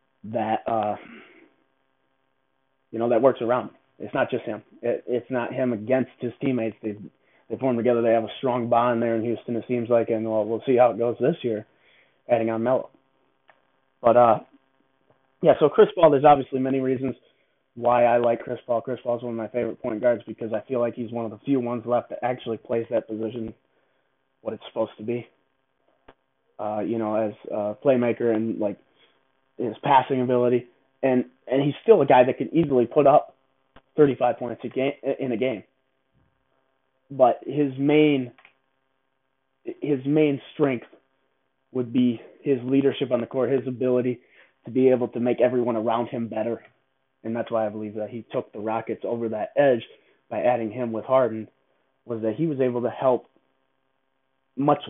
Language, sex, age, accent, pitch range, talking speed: English, male, 20-39, American, 115-130 Hz, 185 wpm